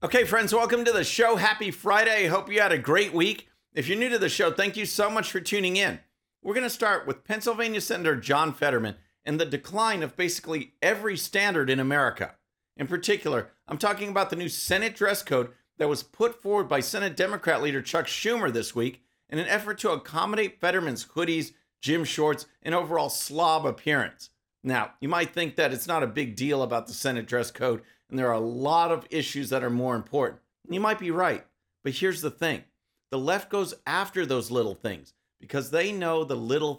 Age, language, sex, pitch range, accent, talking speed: 50-69, English, male, 135-205 Hz, American, 205 wpm